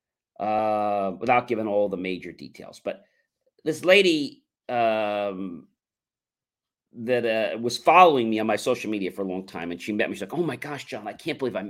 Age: 40-59